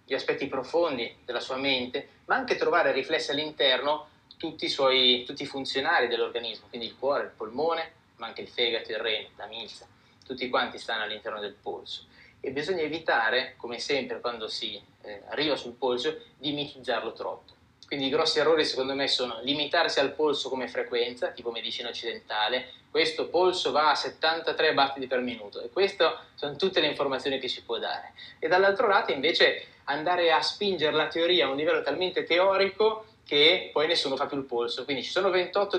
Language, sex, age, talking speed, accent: Italian, male, 20-39, 185 wpm, native